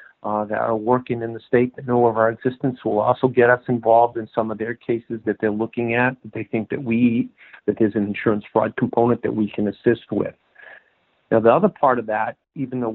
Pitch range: 110-125 Hz